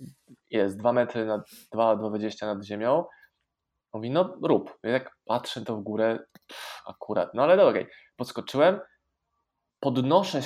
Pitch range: 110-140 Hz